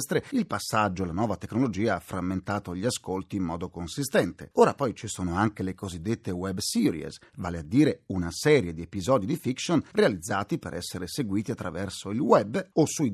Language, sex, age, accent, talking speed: Italian, male, 40-59, native, 180 wpm